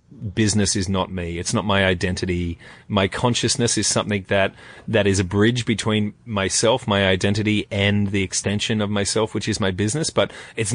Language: English